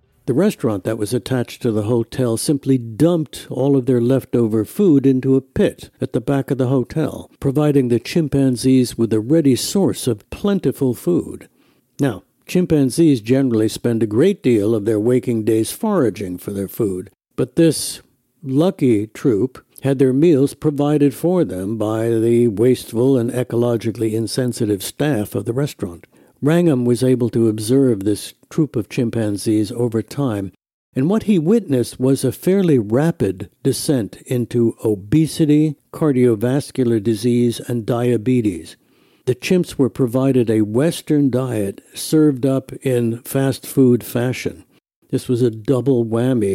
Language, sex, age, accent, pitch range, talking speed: English, male, 60-79, American, 115-140 Hz, 145 wpm